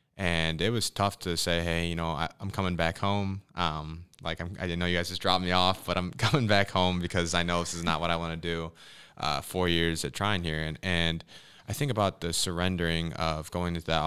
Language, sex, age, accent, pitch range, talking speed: English, male, 20-39, American, 85-95 Hz, 250 wpm